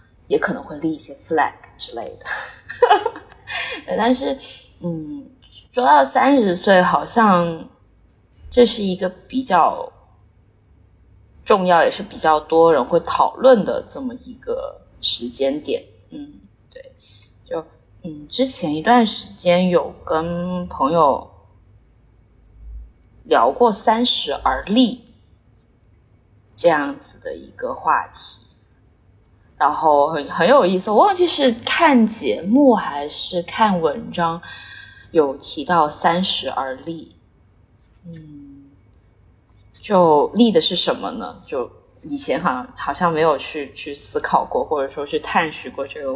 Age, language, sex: 20-39, Chinese, female